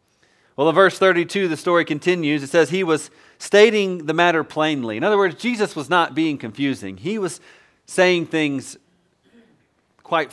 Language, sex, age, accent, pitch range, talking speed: English, male, 40-59, American, 130-175 Hz, 165 wpm